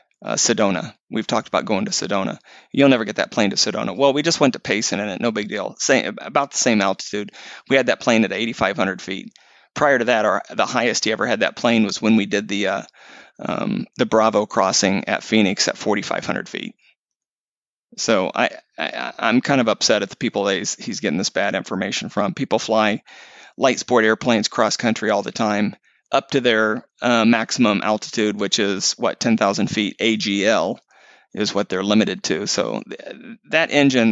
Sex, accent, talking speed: male, American, 200 wpm